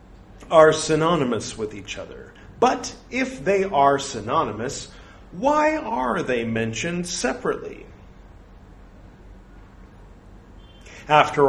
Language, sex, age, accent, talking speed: English, male, 40-59, American, 85 wpm